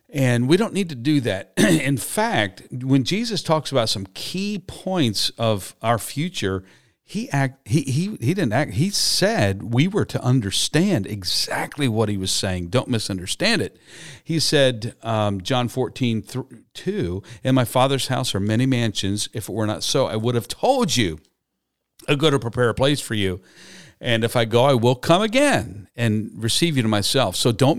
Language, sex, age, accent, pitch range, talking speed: English, male, 50-69, American, 110-150 Hz, 185 wpm